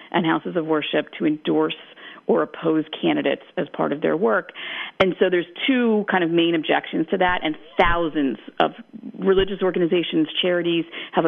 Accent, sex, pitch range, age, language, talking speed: American, female, 160-195 Hz, 40-59, English, 165 wpm